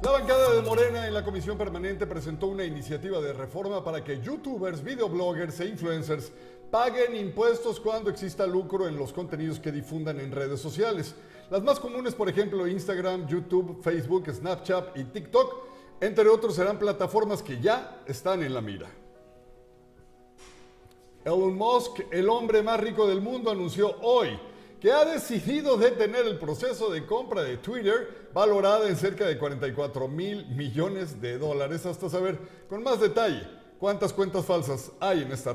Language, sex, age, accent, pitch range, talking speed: Spanish, male, 50-69, Mexican, 155-210 Hz, 155 wpm